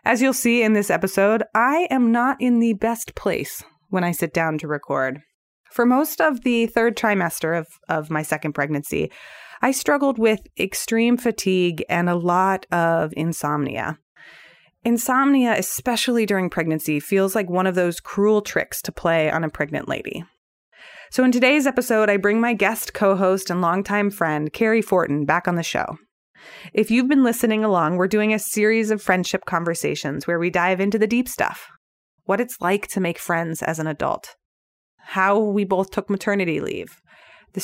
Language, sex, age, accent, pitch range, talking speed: English, female, 20-39, American, 170-220 Hz, 175 wpm